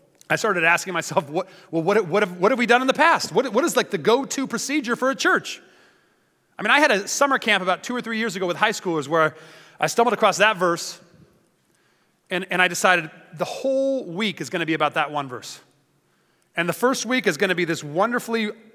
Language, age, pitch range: English, 30-49, 165-210 Hz